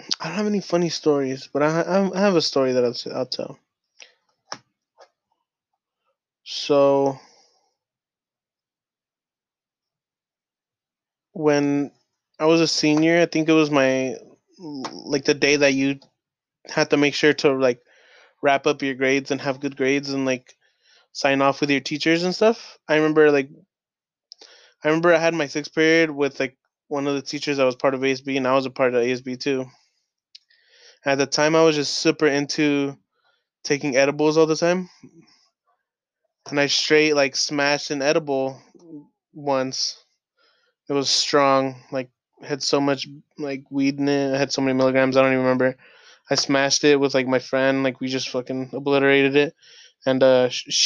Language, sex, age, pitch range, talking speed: English, male, 20-39, 135-155 Hz, 165 wpm